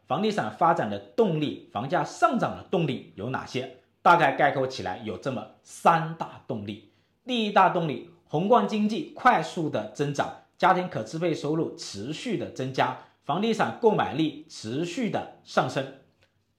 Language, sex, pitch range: Chinese, male, 120-180 Hz